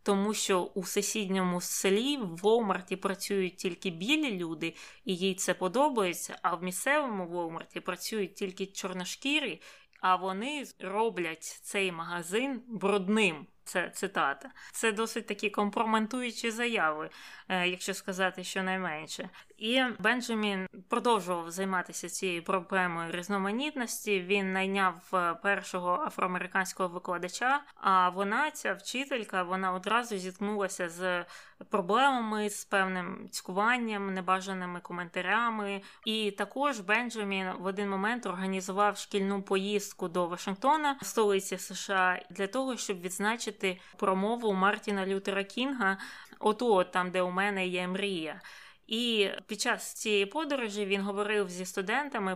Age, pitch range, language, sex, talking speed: 20-39, 185-220 Hz, Ukrainian, female, 115 wpm